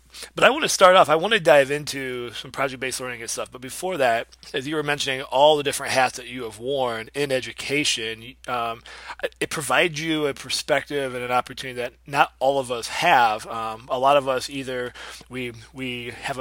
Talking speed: 210 wpm